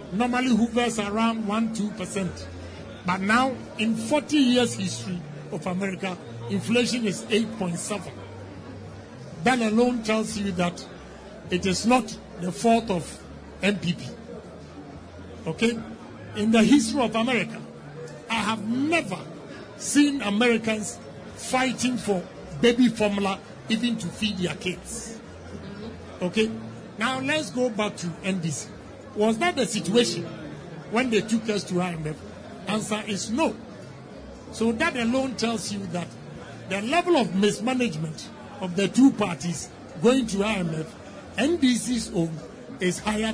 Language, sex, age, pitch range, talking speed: English, male, 50-69, 180-240 Hz, 125 wpm